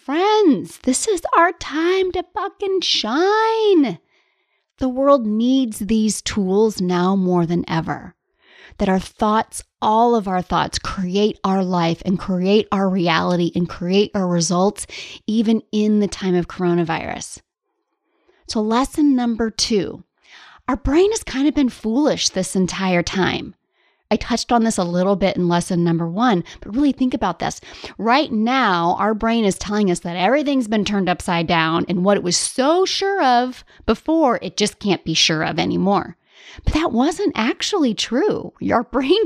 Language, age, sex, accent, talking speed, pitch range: English, 30-49, female, American, 160 wpm, 180-270 Hz